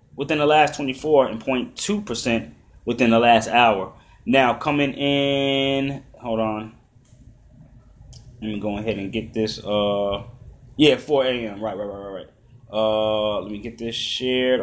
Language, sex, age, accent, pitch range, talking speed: English, male, 20-39, American, 115-140 Hz, 160 wpm